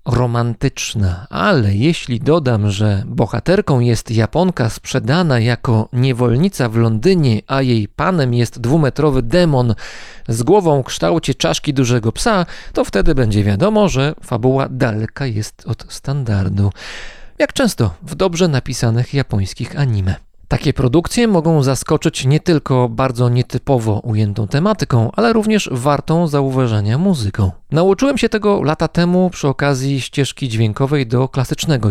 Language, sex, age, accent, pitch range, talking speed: Polish, male, 40-59, native, 115-150 Hz, 130 wpm